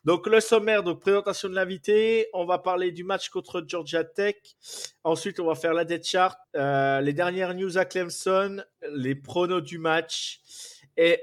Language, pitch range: French, 155-185 Hz